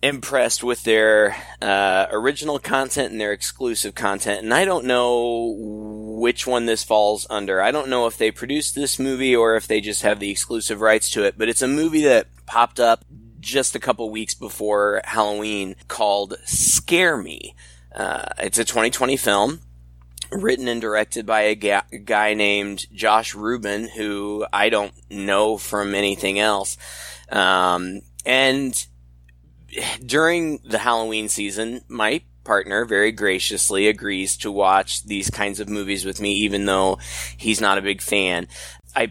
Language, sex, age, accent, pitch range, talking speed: English, male, 20-39, American, 95-120 Hz, 155 wpm